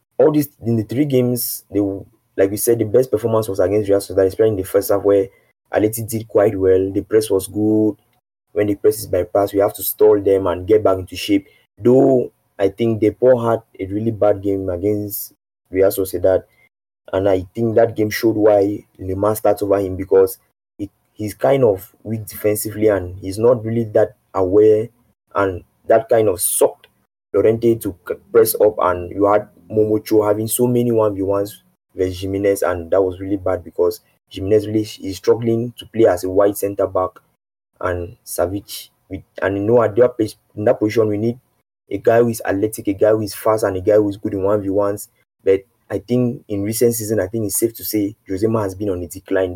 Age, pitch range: 20-39, 95-115 Hz